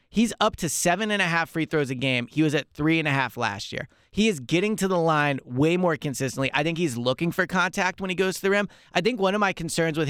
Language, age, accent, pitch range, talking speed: English, 20-39, American, 130-185 Hz, 285 wpm